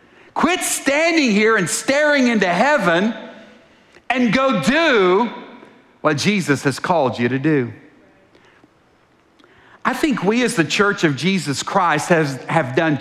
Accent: American